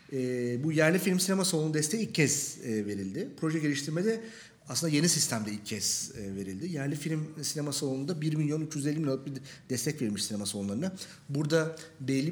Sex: male